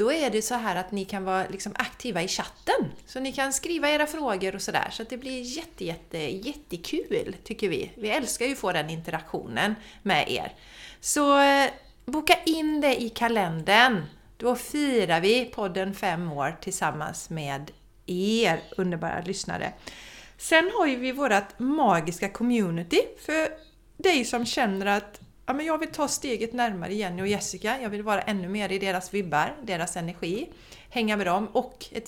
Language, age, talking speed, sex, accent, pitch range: Swedish, 30-49, 175 wpm, female, native, 180-255 Hz